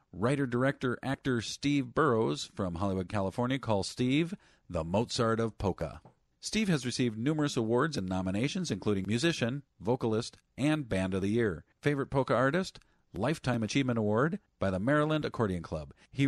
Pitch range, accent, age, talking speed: 100-135 Hz, American, 50-69, 145 wpm